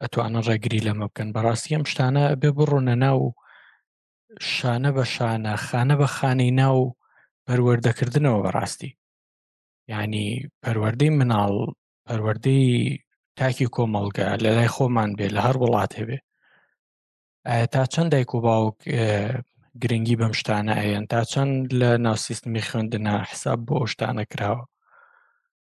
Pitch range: 115-140 Hz